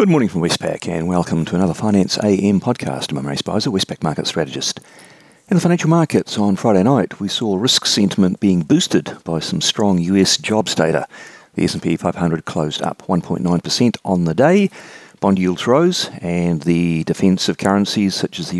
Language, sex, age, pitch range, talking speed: English, male, 40-59, 80-105 Hz, 175 wpm